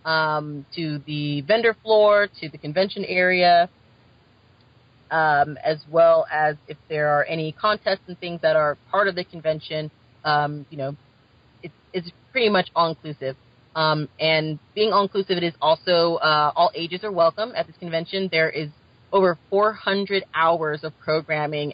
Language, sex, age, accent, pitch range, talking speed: English, female, 30-49, American, 145-180 Hz, 155 wpm